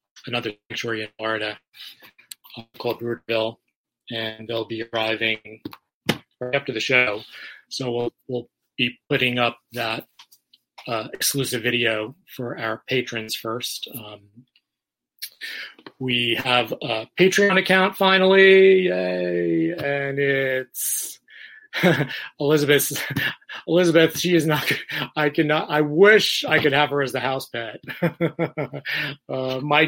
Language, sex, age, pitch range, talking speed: English, male, 30-49, 120-155 Hz, 115 wpm